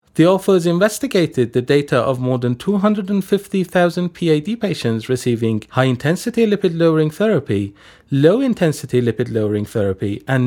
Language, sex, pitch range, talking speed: Persian, male, 125-195 Hz, 110 wpm